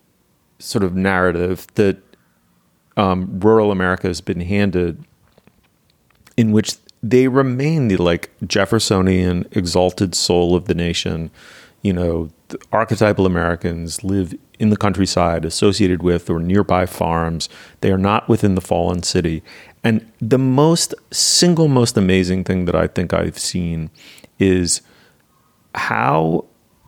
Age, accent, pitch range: 30-49, American, 85-110 Hz